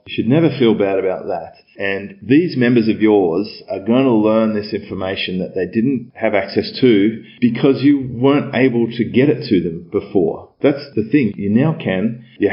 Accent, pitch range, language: Australian, 100-115 Hz, English